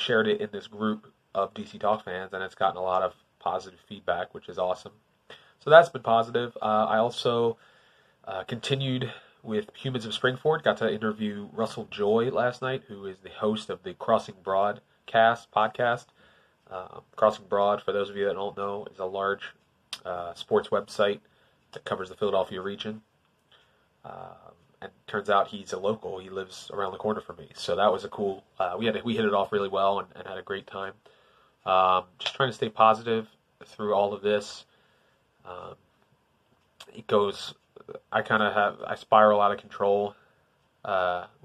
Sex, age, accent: male, 30-49, American